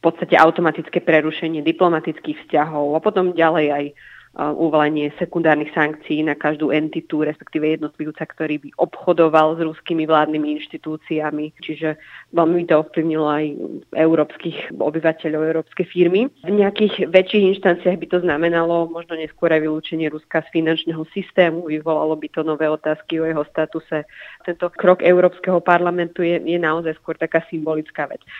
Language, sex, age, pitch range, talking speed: Slovak, female, 20-39, 155-175 Hz, 150 wpm